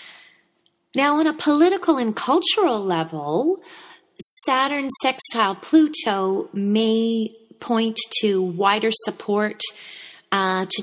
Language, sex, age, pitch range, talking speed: English, female, 30-49, 180-225 Hz, 95 wpm